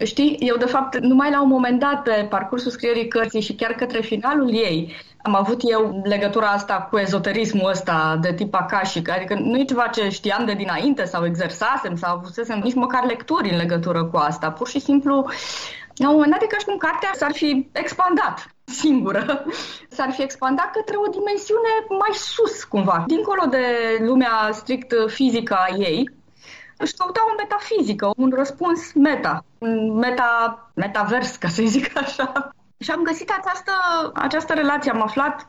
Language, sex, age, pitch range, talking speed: Romanian, female, 20-39, 210-295 Hz, 170 wpm